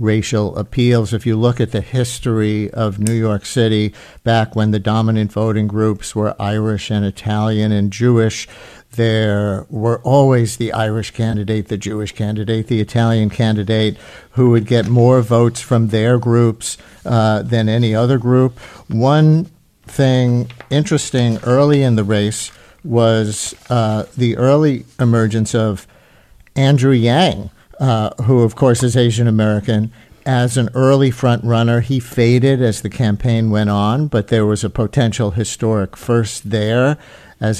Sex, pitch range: male, 110-125 Hz